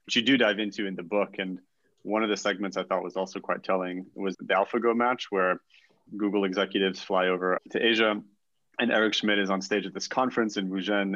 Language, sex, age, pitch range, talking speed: English, male, 30-49, 95-105 Hz, 220 wpm